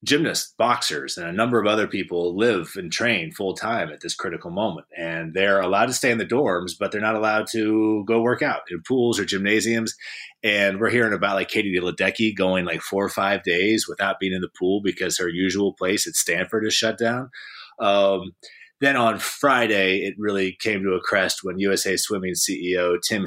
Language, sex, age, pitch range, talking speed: English, male, 30-49, 90-110 Hz, 205 wpm